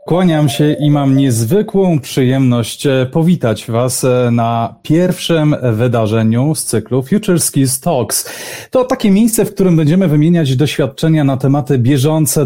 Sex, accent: male, native